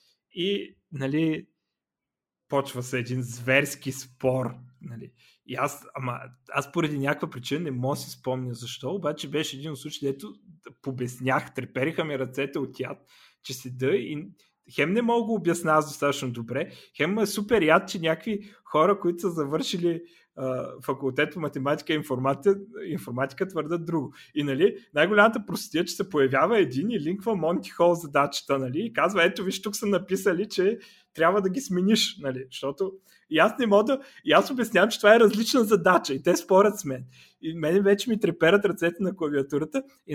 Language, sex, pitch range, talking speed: Bulgarian, male, 140-195 Hz, 175 wpm